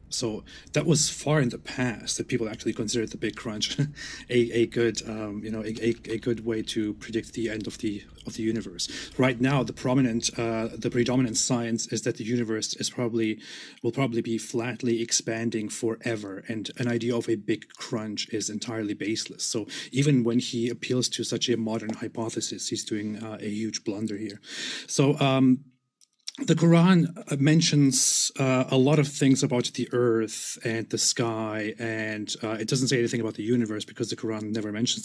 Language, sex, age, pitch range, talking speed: English, male, 30-49, 115-130 Hz, 190 wpm